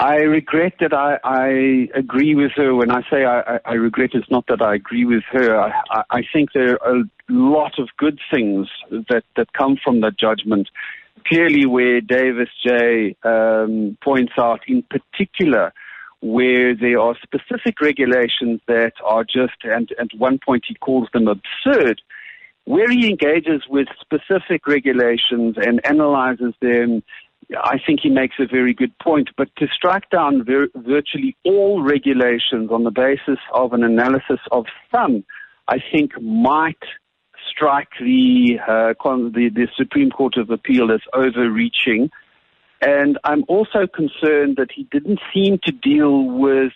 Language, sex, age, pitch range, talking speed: English, male, 50-69, 120-155 Hz, 160 wpm